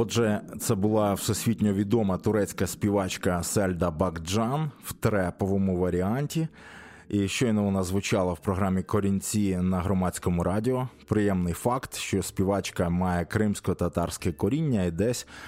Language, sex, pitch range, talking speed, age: Ukrainian, male, 95-115 Hz, 120 wpm, 20-39